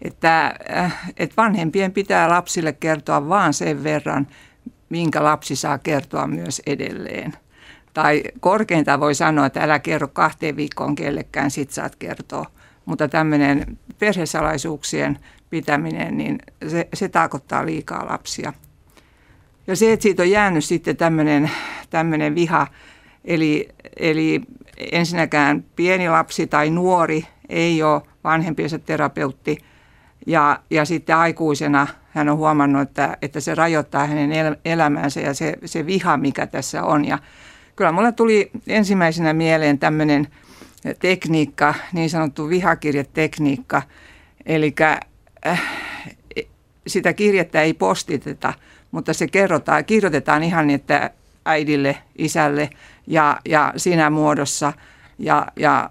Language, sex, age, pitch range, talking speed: Finnish, female, 60-79, 150-170 Hz, 120 wpm